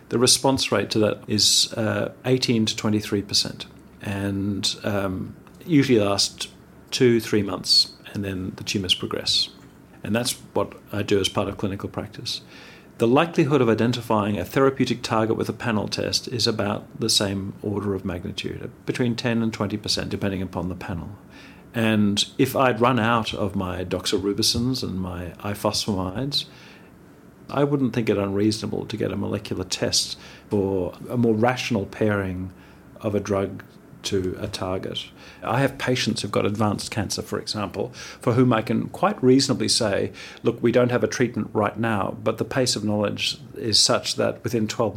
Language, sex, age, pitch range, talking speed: English, male, 40-59, 100-120 Hz, 165 wpm